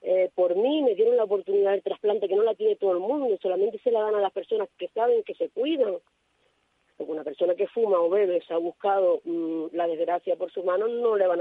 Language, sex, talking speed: Spanish, female, 240 wpm